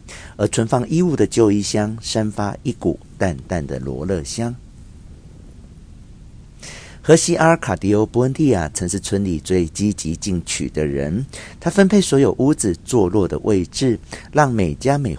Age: 50-69